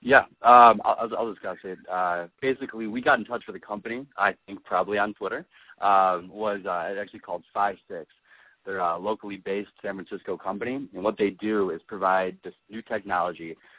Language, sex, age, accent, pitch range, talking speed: English, male, 30-49, American, 85-100 Hz, 190 wpm